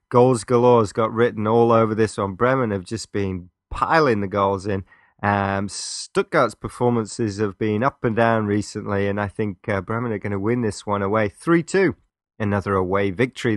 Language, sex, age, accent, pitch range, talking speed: English, male, 30-49, British, 100-125 Hz, 185 wpm